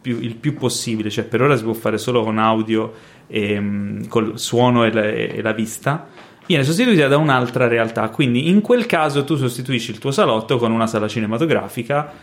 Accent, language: native, Italian